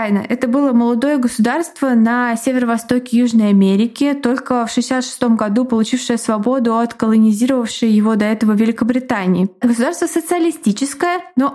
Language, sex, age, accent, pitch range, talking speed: Russian, female, 20-39, native, 210-265 Hz, 120 wpm